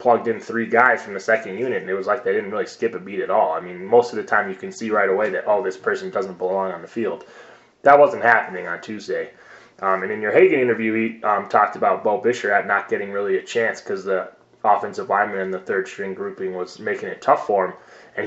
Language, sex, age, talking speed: English, male, 20-39, 260 wpm